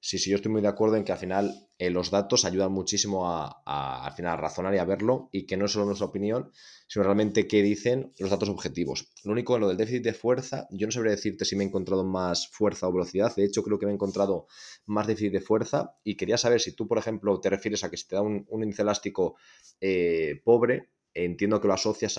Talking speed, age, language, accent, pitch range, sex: 255 wpm, 20-39, Spanish, Spanish, 95-110 Hz, male